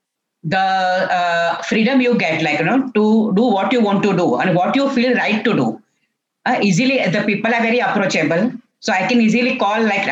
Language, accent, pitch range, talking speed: English, Indian, 180-240 Hz, 210 wpm